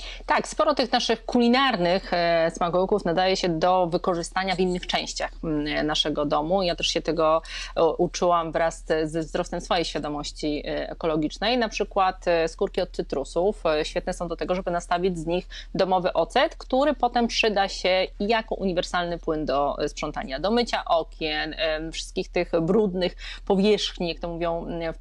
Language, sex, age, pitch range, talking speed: Polish, female, 30-49, 165-200 Hz, 145 wpm